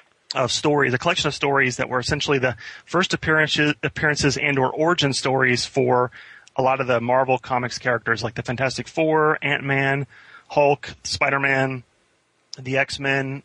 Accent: American